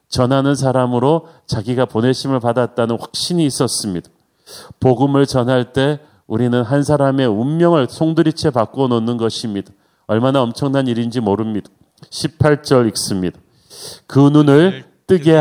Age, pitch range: 40-59, 120-150 Hz